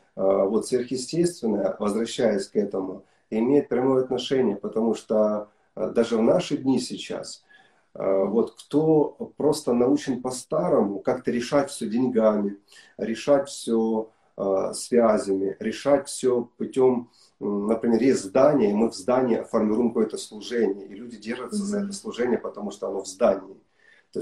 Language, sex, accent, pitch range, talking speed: Russian, male, native, 110-135 Hz, 130 wpm